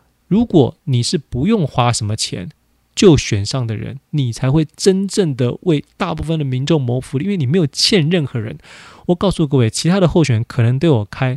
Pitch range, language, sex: 115-155 Hz, Chinese, male